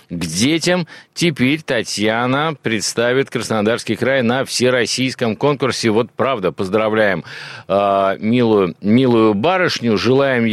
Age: 50-69